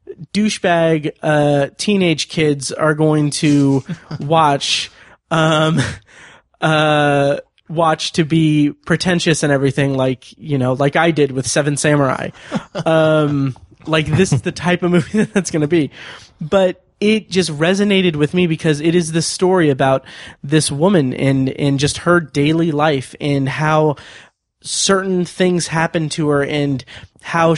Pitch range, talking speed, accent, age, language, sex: 140-165 Hz, 145 wpm, American, 20-39, English, male